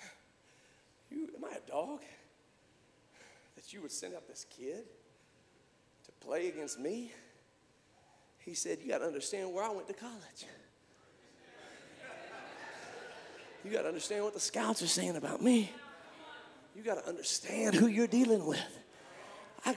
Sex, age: male, 40-59